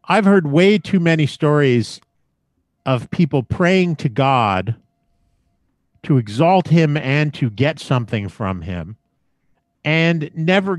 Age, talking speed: 50-69, 120 wpm